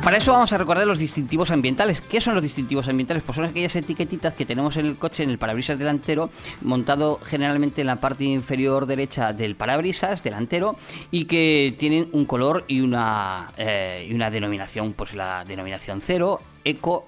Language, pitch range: Spanish, 130-170 Hz